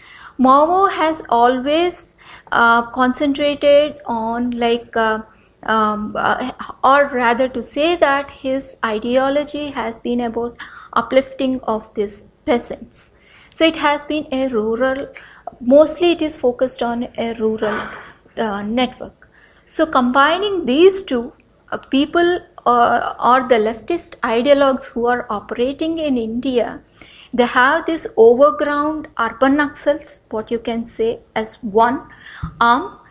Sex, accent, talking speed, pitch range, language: female, Indian, 120 wpm, 235-290 Hz, English